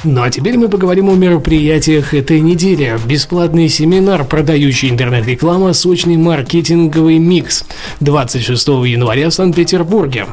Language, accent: Russian, native